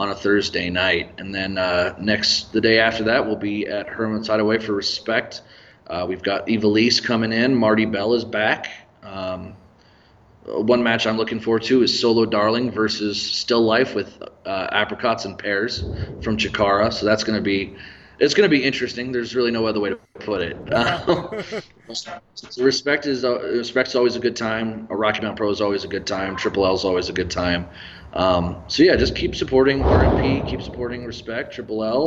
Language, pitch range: English, 100-120 Hz